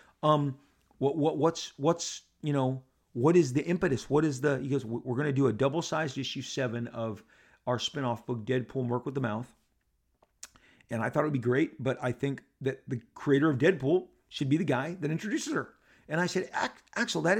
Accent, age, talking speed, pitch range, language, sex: American, 40-59, 205 wpm, 120-150 Hz, English, male